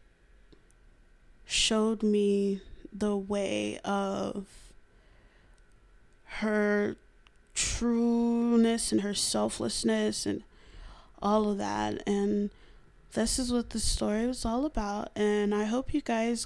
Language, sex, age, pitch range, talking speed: English, female, 20-39, 190-220 Hz, 100 wpm